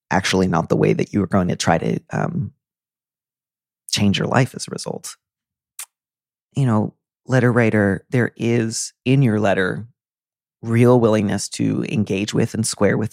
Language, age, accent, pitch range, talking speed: English, 30-49, American, 100-125 Hz, 160 wpm